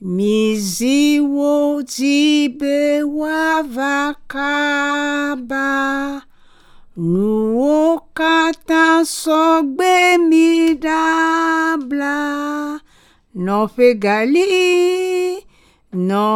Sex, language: female, English